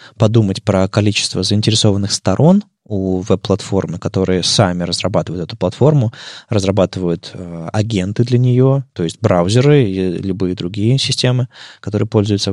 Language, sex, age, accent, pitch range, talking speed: Russian, male, 20-39, native, 95-120 Hz, 125 wpm